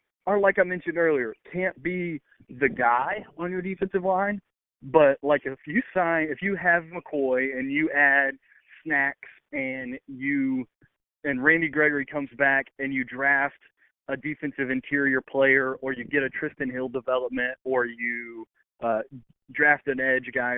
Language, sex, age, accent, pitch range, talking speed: English, male, 30-49, American, 130-150 Hz, 155 wpm